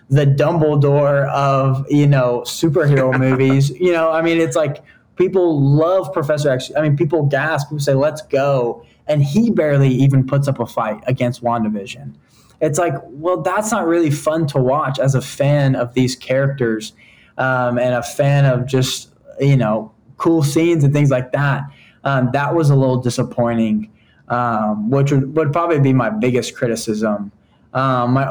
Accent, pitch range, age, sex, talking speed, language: American, 125-140 Hz, 10-29, male, 170 wpm, English